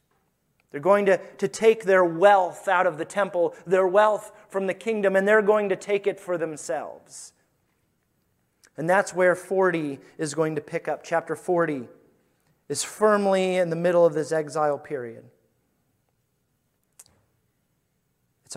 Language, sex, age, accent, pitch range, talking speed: English, male, 30-49, American, 155-195 Hz, 145 wpm